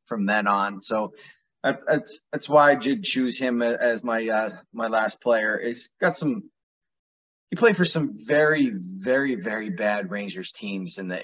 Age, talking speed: 30-49, 175 wpm